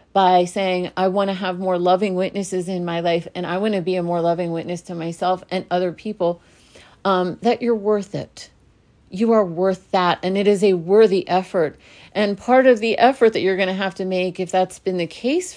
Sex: female